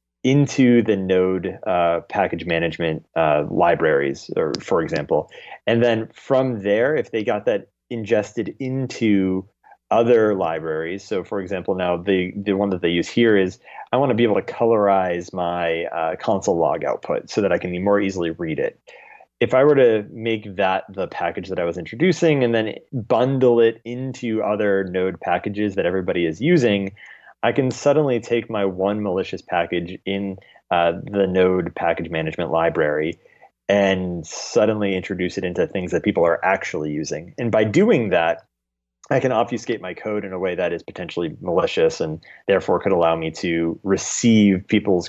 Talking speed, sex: 170 wpm, male